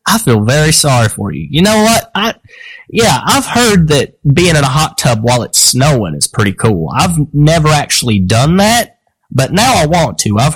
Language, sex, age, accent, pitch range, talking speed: English, male, 30-49, American, 120-175 Hz, 205 wpm